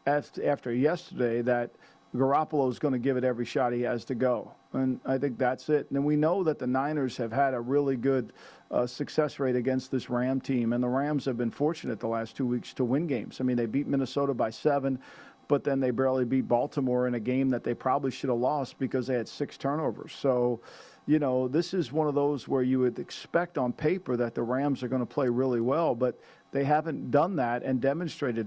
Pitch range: 125-145 Hz